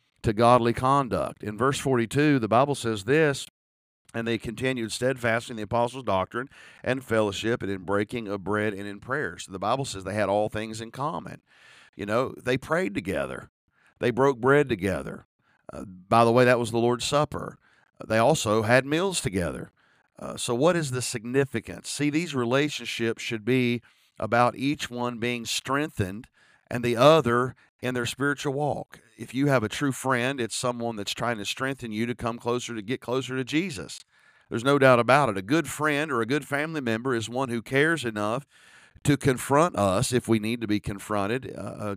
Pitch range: 110-135 Hz